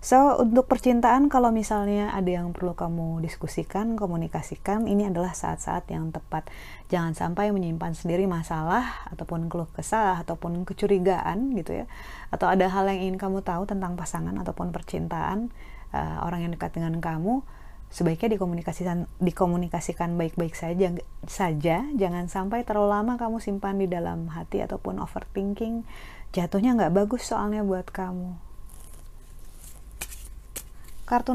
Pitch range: 160-215 Hz